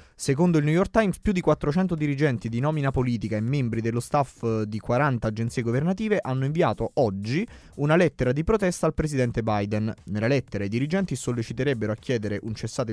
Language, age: Italian, 20-39